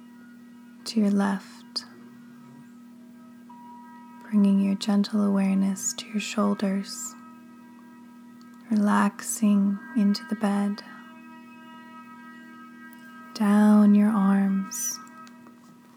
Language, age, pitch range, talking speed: English, 20-39, 200-240 Hz, 65 wpm